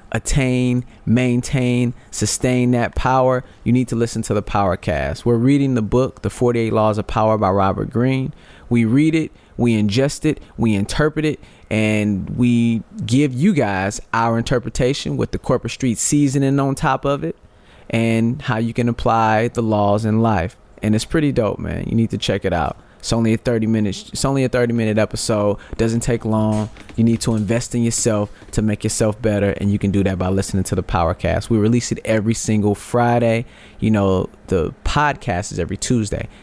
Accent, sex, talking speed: American, male, 195 wpm